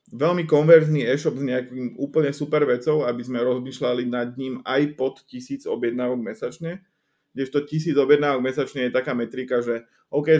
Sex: male